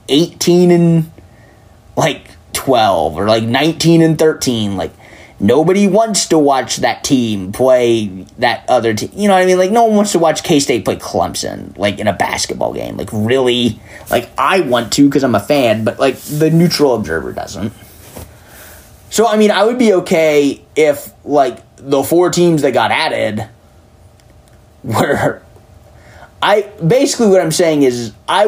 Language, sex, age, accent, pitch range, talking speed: English, male, 20-39, American, 110-160 Hz, 165 wpm